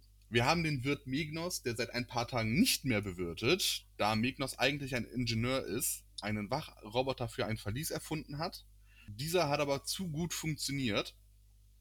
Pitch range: 105-140 Hz